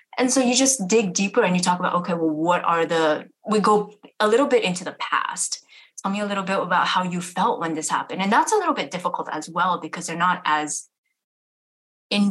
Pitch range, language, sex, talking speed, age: 170-205 Hz, English, female, 235 wpm, 20-39